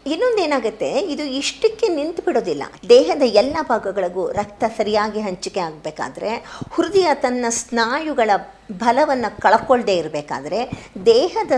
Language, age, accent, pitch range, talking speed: Kannada, 50-69, native, 210-285 Hz, 100 wpm